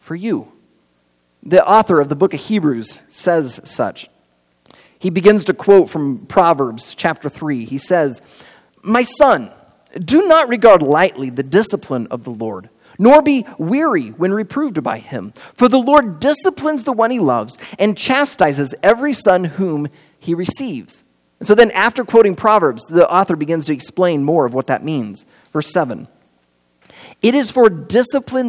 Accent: American